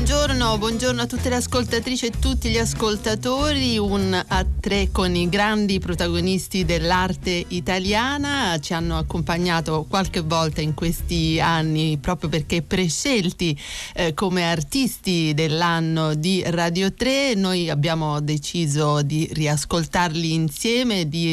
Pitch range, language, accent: 155-185 Hz, Italian, native